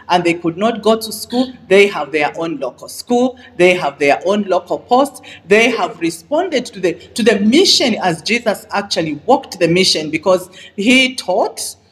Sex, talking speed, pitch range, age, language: female, 180 wpm, 170-235 Hz, 40-59, English